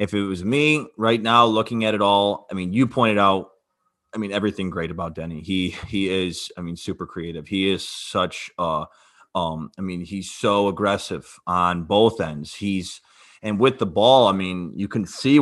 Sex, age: male, 30-49